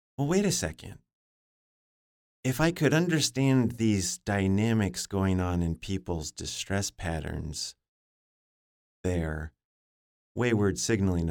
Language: English